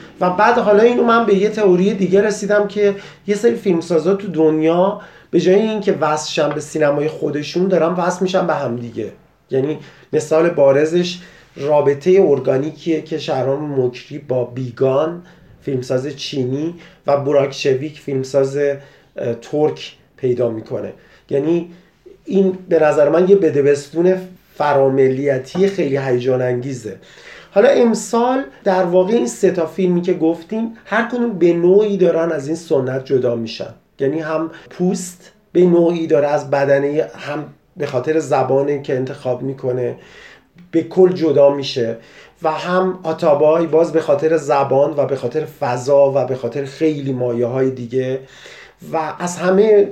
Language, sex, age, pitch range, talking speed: Persian, male, 40-59, 140-180 Hz, 140 wpm